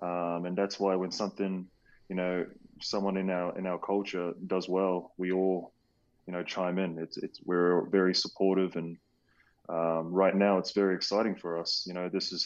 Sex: male